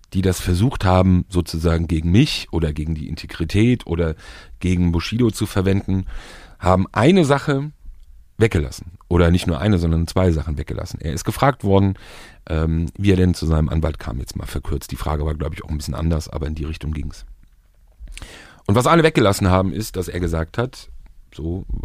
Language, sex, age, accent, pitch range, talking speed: German, male, 40-59, German, 80-105 Hz, 190 wpm